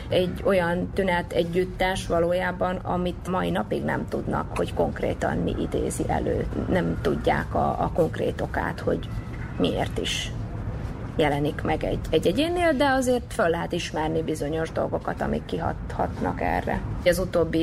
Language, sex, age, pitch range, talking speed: Hungarian, female, 30-49, 110-175 Hz, 135 wpm